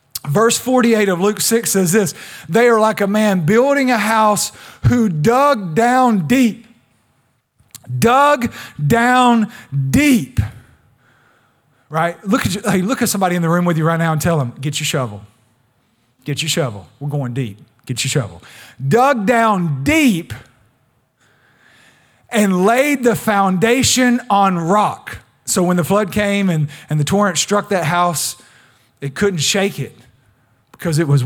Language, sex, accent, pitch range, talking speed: English, male, American, 135-200 Hz, 155 wpm